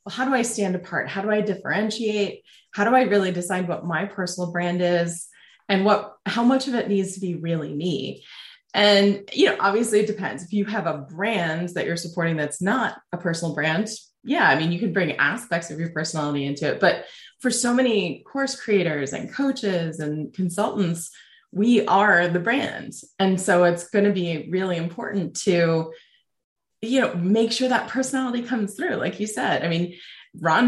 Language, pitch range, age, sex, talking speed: English, 170-225 Hz, 20-39, female, 195 wpm